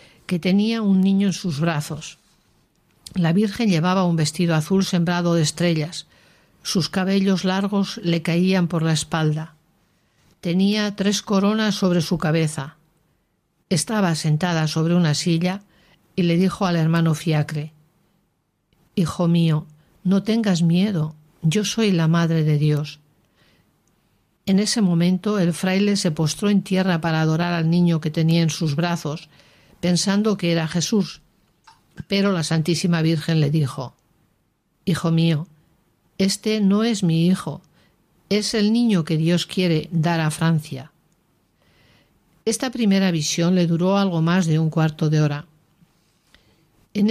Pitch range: 160-190 Hz